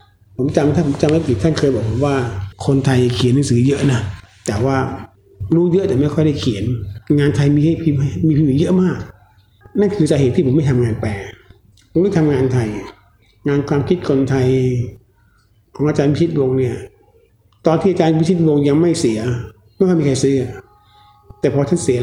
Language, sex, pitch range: Thai, male, 110-150 Hz